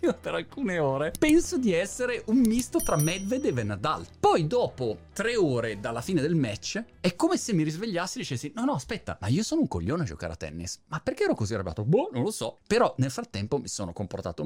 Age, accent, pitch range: 30-49, native, 105-150 Hz